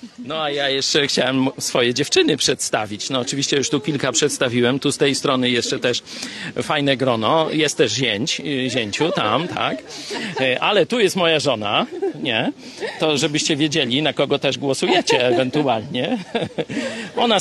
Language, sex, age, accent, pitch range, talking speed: Polish, male, 50-69, native, 130-160 Hz, 150 wpm